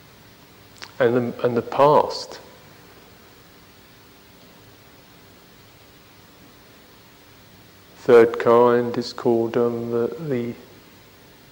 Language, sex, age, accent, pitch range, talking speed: English, male, 50-69, British, 110-145 Hz, 65 wpm